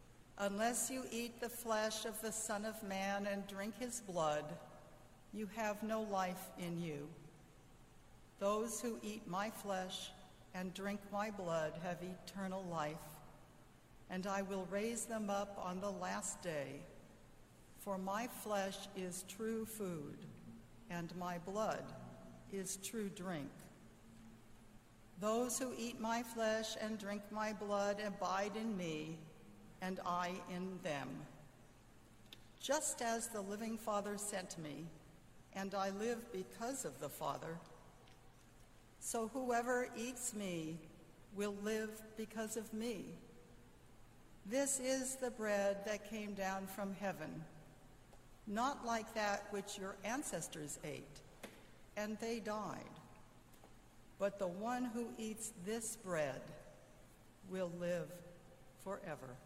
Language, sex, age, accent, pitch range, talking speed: English, female, 60-79, American, 165-220 Hz, 125 wpm